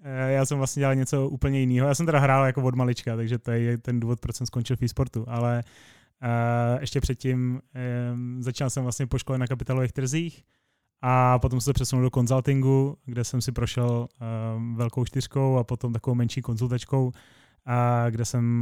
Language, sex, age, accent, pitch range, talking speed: Czech, male, 20-39, native, 125-135 Hz, 190 wpm